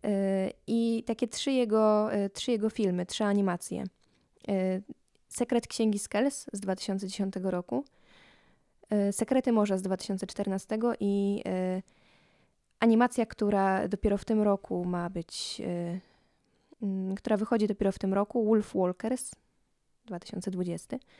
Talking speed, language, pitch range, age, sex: 100 wpm, Polish, 195-230 Hz, 20-39, female